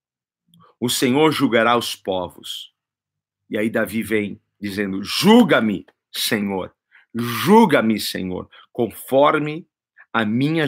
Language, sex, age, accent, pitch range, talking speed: Portuguese, male, 50-69, Brazilian, 105-165 Hz, 95 wpm